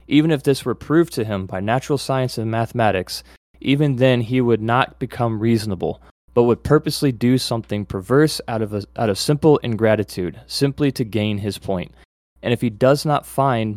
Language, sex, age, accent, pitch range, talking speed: English, male, 20-39, American, 105-130 Hz, 190 wpm